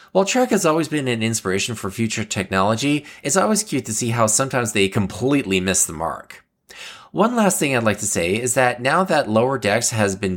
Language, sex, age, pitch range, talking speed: English, male, 20-39, 100-145 Hz, 215 wpm